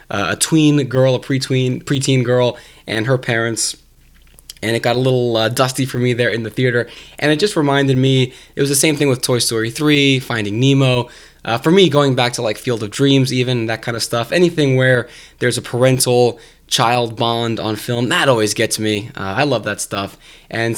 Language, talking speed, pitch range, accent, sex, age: English, 220 wpm, 110-140 Hz, American, male, 20-39